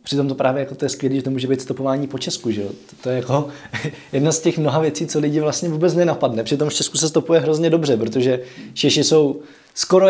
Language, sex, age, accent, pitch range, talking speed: Czech, male, 20-39, native, 140-165 Hz, 230 wpm